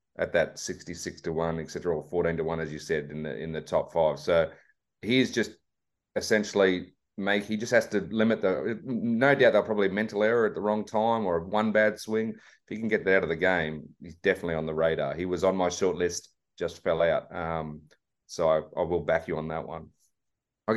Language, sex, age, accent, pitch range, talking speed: English, male, 30-49, Australian, 80-95 Hz, 230 wpm